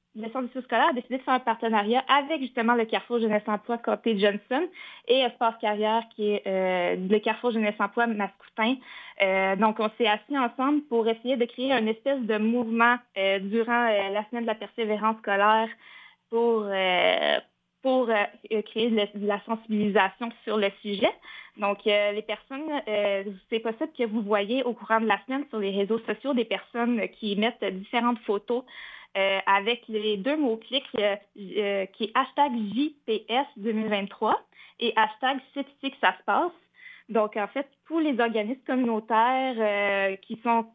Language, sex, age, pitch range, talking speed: French, female, 20-39, 210-250 Hz, 165 wpm